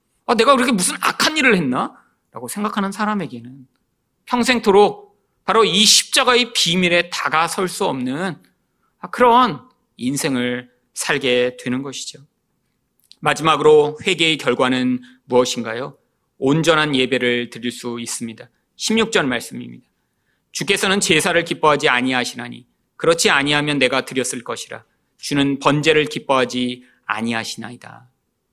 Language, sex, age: Korean, male, 40-59